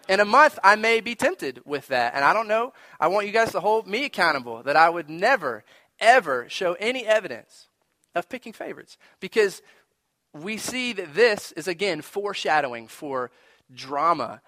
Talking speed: 175 wpm